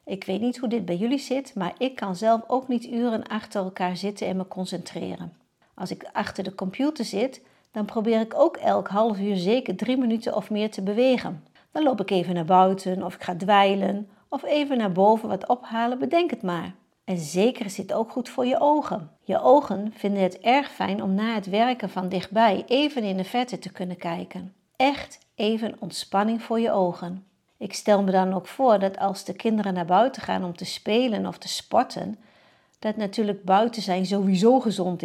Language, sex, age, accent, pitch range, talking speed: Dutch, female, 50-69, Dutch, 190-245 Hz, 205 wpm